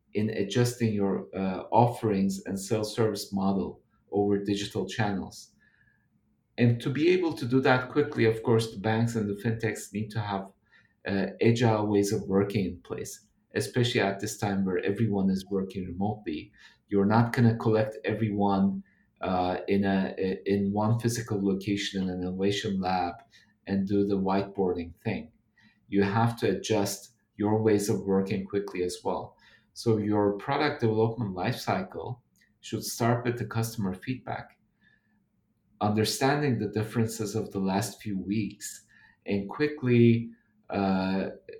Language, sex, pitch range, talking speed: English, male, 100-115 Hz, 145 wpm